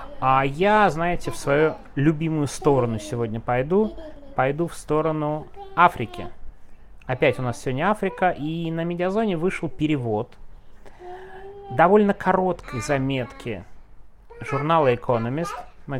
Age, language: 30-49, Russian